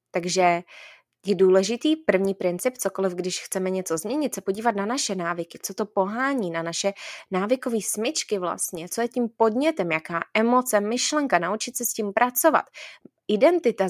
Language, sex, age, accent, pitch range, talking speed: Czech, female, 20-39, native, 205-285 Hz, 155 wpm